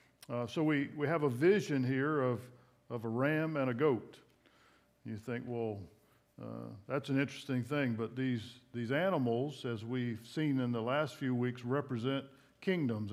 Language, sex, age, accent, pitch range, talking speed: English, male, 50-69, American, 120-145 Hz, 170 wpm